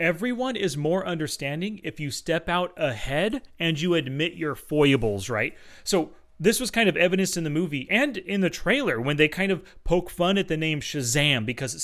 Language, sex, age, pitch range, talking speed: English, male, 30-49, 150-195 Hz, 205 wpm